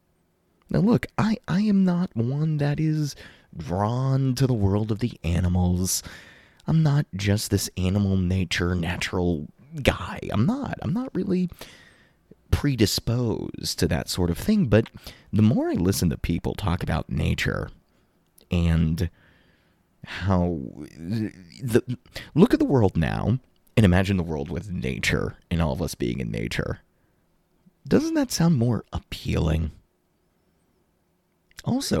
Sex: male